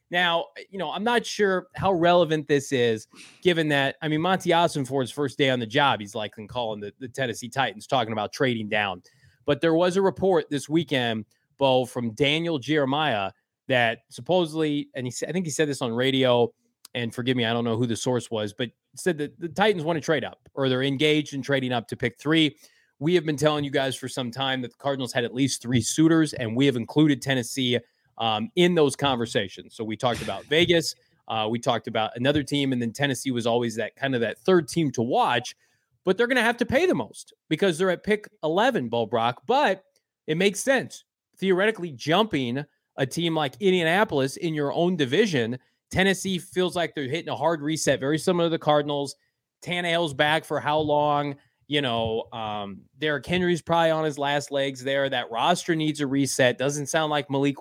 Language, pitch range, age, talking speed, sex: English, 125-165 Hz, 20-39, 210 wpm, male